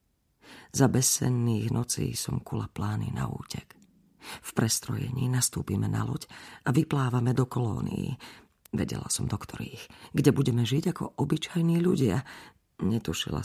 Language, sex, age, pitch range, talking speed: Slovak, female, 40-59, 120-160 Hz, 120 wpm